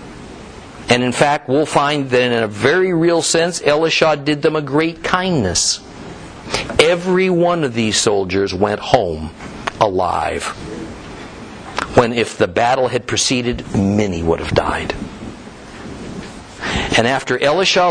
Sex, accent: male, American